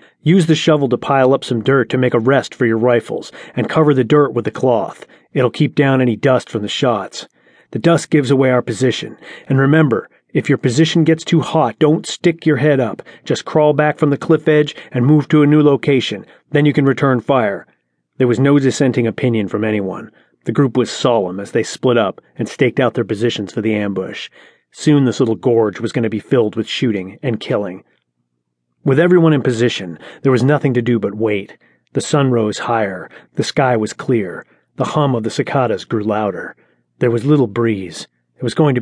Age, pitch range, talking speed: 30-49, 110-140 Hz, 210 wpm